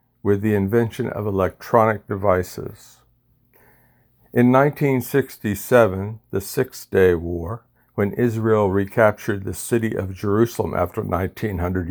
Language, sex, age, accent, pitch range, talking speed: English, male, 60-79, American, 100-120 Hz, 100 wpm